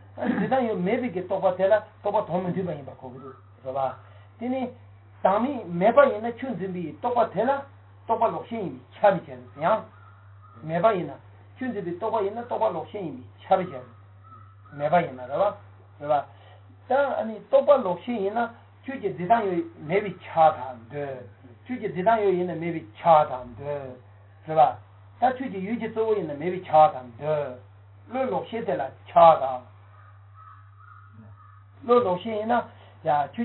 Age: 60-79